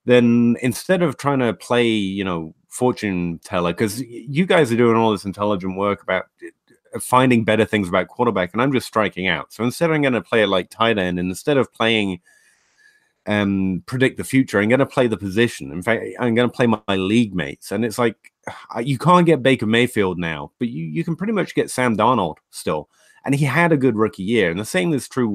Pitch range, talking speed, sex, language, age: 100-135 Hz, 225 wpm, male, English, 30-49